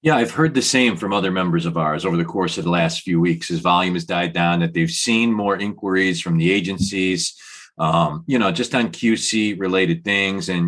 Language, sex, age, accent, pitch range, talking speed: English, male, 40-59, American, 90-110 Hz, 225 wpm